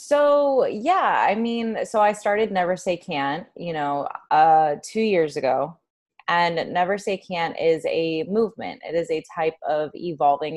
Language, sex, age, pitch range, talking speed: English, female, 20-39, 140-175 Hz, 165 wpm